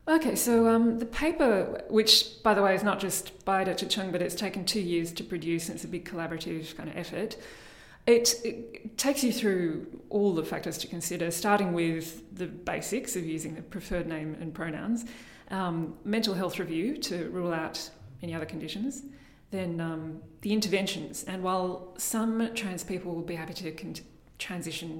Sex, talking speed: female, 180 wpm